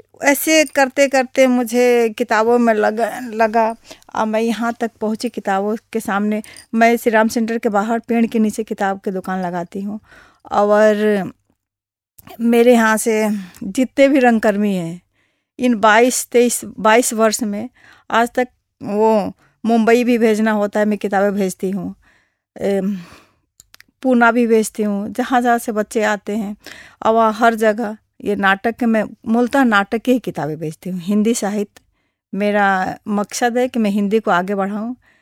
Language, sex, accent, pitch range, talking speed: Hindi, female, native, 205-235 Hz, 150 wpm